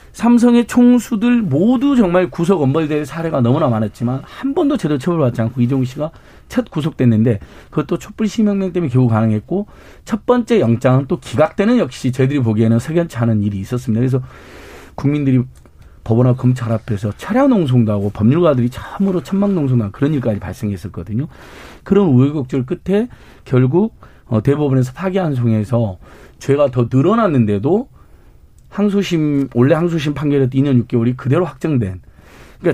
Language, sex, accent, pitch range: Korean, male, native, 115-180 Hz